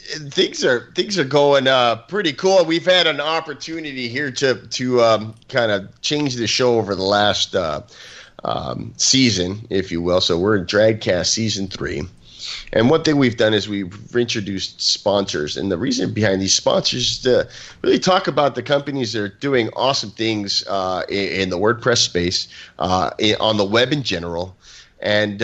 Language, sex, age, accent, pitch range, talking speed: English, male, 30-49, American, 100-135 Hz, 175 wpm